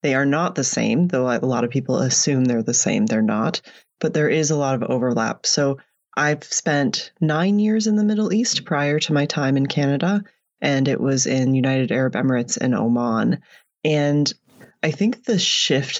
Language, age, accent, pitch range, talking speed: English, 30-49, American, 130-175 Hz, 195 wpm